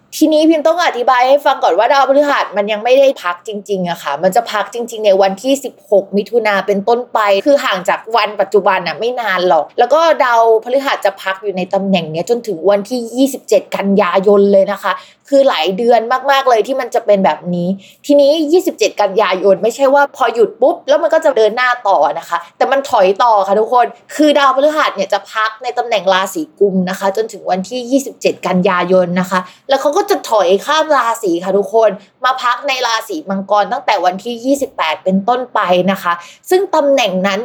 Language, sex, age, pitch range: Thai, female, 20-39, 200-275 Hz